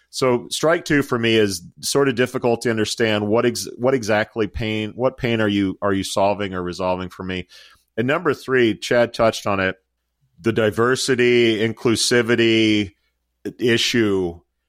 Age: 40-59